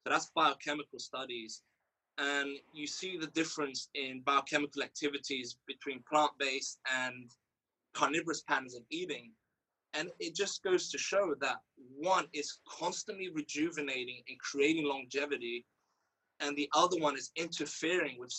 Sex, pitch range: male, 140-175 Hz